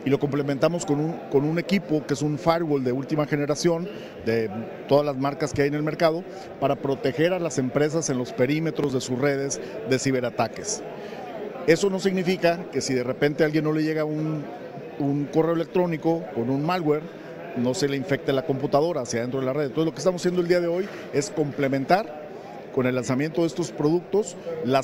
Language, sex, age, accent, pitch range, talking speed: Spanish, male, 40-59, Mexican, 135-165 Hz, 205 wpm